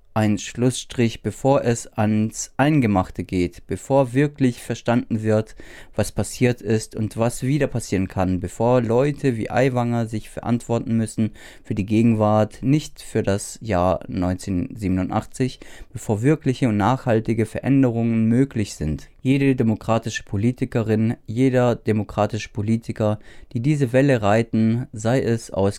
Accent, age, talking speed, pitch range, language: German, 20-39, 125 wpm, 105-130 Hz, German